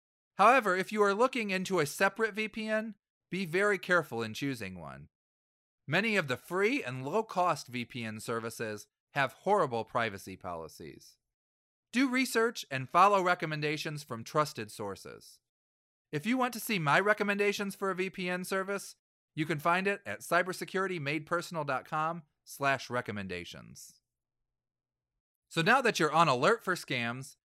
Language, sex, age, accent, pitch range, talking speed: English, male, 40-59, American, 120-190 Hz, 135 wpm